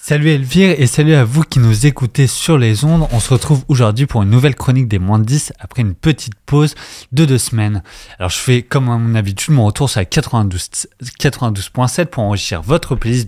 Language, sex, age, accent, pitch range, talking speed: French, male, 20-39, French, 105-145 Hz, 210 wpm